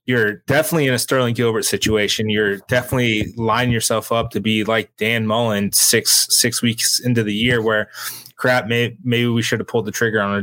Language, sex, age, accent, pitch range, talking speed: English, male, 20-39, American, 110-125 Hz, 200 wpm